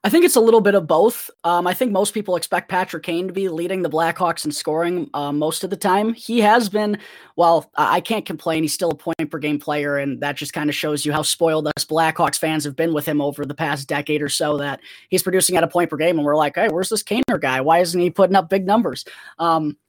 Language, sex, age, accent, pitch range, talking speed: English, female, 20-39, American, 155-190 Hz, 265 wpm